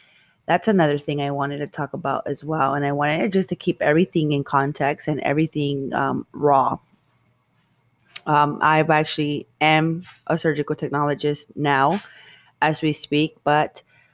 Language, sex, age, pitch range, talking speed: English, female, 20-39, 145-165 Hz, 150 wpm